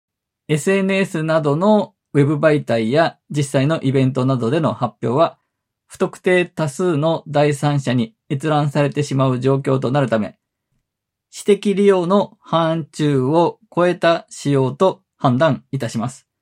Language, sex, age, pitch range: Japanese, male, 20-39, 120-160 Hz